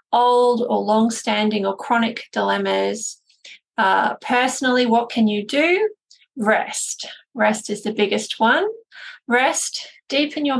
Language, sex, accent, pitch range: English, female, Australian, 210-245 Hz